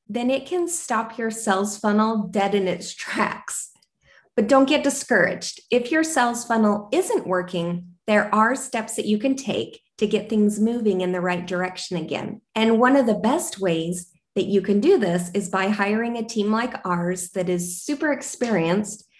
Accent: American